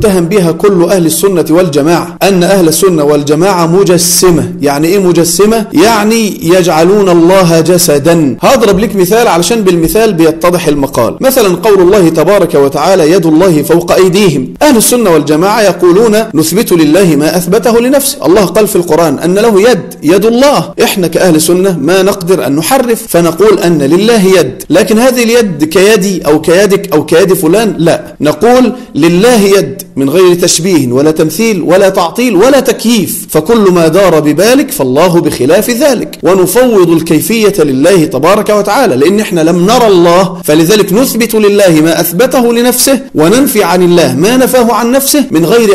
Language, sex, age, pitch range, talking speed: English, male, 40-59, 170-225 Hz, 155 wpm